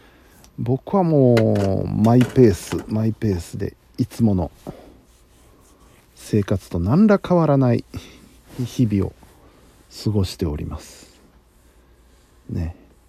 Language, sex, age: Japanese, male, 50-69